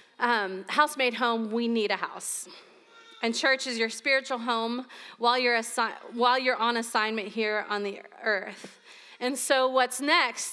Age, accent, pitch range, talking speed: 30-49, American, 200-255 Hz, 165 wpm